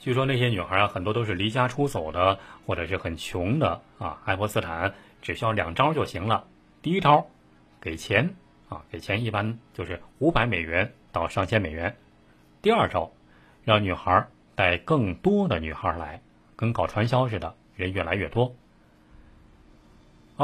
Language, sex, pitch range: Chinese, male, 90-120 Hz